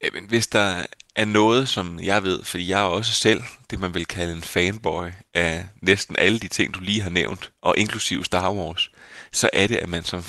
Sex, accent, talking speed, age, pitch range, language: male, native, 220 wpm, 30-49, 90-110 Hz, Danish